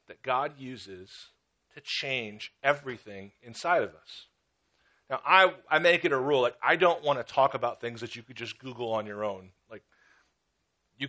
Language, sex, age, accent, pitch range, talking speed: English, male, 40-59, American, 130-190 Hz, 185 wpm